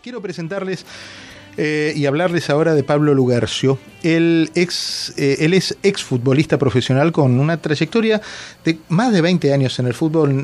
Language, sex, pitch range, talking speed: Spanish, male, 130-165 Hz, 150 wpm